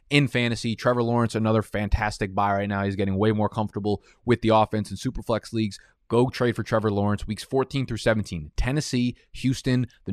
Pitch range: 105-125 Hz